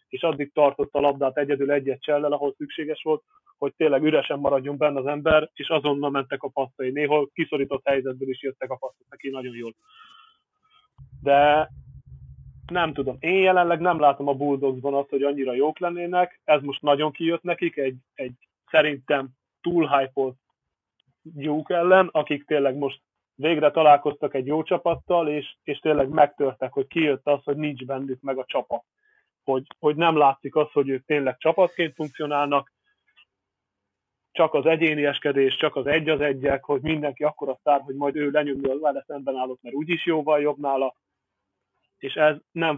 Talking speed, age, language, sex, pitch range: 165 wpm, 30-49, Hungarian, male, 140-155 Hz